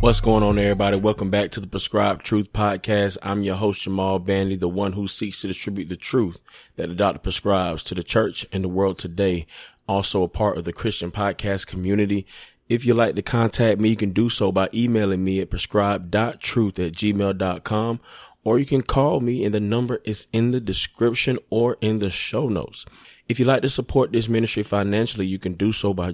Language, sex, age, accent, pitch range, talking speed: English, male, 20-39, American, 95-110 Hz, 205 wpm